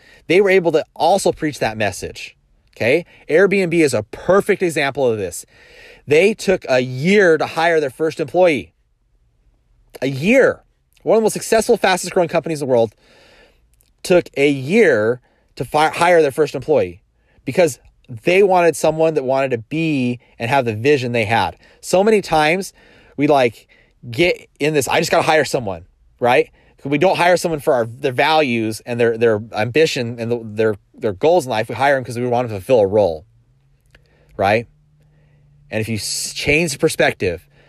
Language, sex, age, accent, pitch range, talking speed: English, male, 30-49, American, 115-160 Hz, 175 wpm